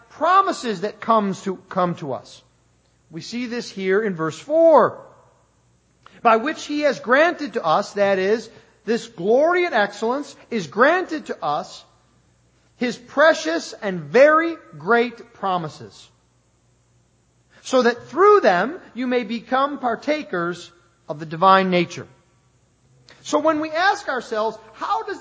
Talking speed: 135 wpm